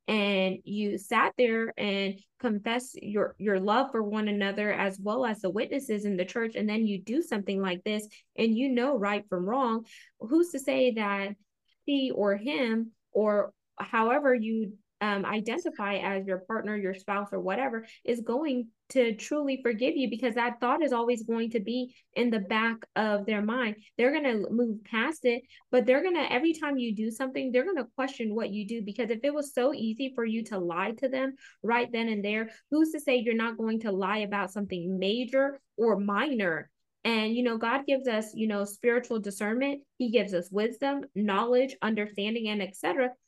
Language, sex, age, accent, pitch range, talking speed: English, female, 20-39, American, 200-245 Hz, 195 wpm